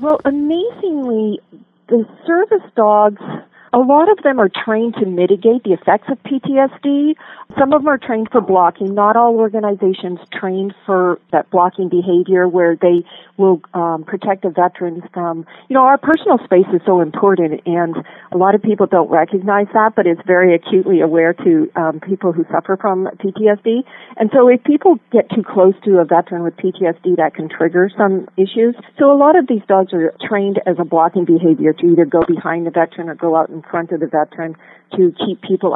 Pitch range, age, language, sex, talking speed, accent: 170-215 Hz, 50-69, English, female, 190 wpm, American